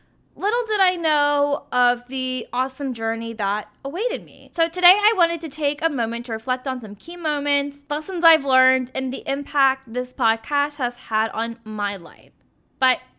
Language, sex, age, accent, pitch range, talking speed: English, female, 10-29, American, 220-285 Hz, 180 wpm